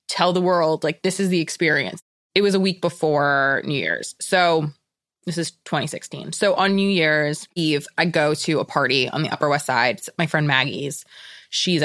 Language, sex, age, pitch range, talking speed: English, female, 20-39, 155-195 Hz, 200 wpm